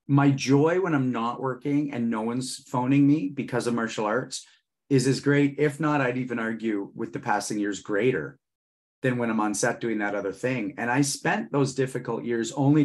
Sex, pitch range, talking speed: male, 120-145 Hz, 205 wpm